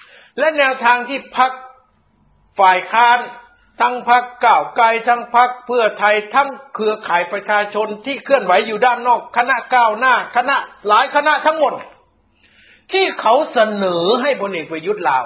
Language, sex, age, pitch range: Thai, male, 60-79, 185-245 Hz